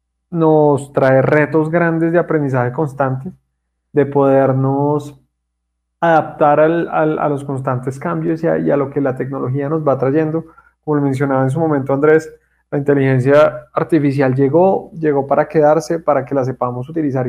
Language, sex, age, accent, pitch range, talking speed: Spanish, male, 20-39, Colombian, 135-160 Hz, 160 wpm